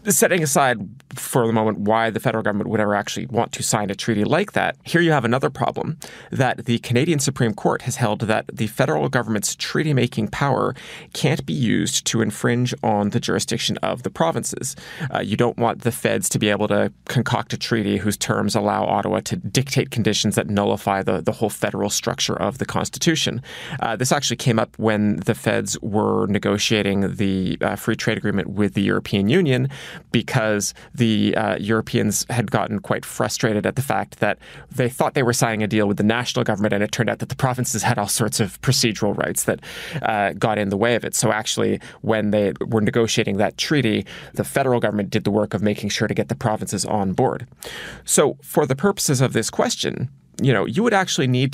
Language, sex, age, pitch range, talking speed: English, male, 30-49, 105-125 Hz, 205 wpm